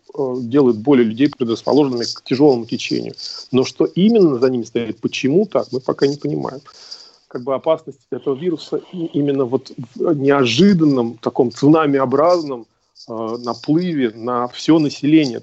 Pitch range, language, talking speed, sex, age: 125-155 Hz, Russian, 130 wpm, male, 40-59